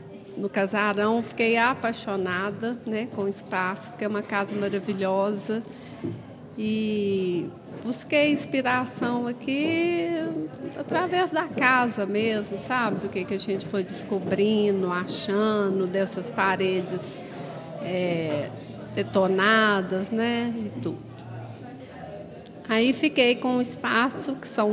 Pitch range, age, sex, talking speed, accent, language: 195-240 Hz, 40-59, female, 105 wpm, Brazilian, Portuguese